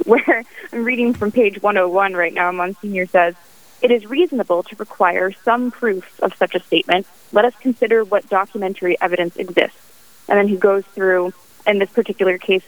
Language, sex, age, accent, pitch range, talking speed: English, female, 20-39, American, 180-220 Hz, 175 wpm